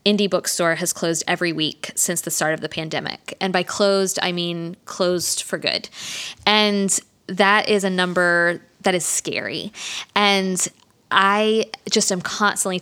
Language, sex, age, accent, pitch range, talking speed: English, female, 20-39, American, 175-205 Hz, 155 wpm